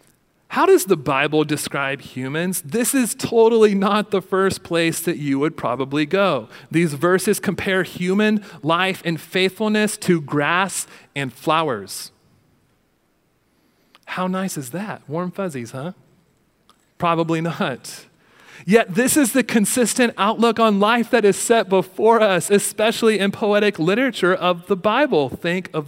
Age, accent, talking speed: 40-59, American, 140 wpm